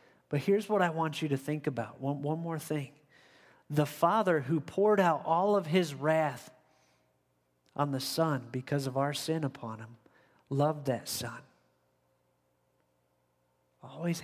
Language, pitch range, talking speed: English, 130-155 Hz, 150 wpm